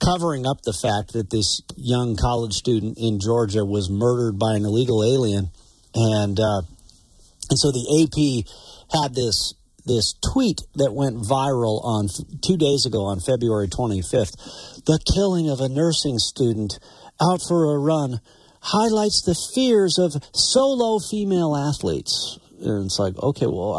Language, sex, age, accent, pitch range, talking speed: English, male, 50-69, American, 115-170 Hz, 150 wpm